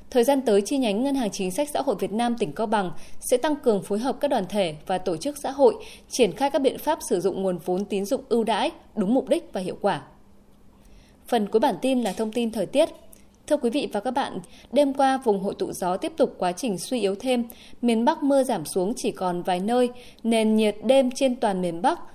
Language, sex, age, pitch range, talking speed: Vietnamese, female, 20-39, 200-265 Hz, 250 wpm